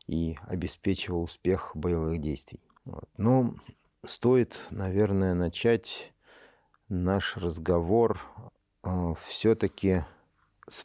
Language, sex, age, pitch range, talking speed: Russian, male, 50-69, 85-110 Hz, 85 wpm